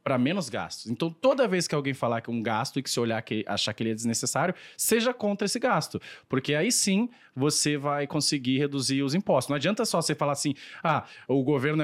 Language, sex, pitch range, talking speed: Portuguese, male, 115-155 Hz, 230 wpm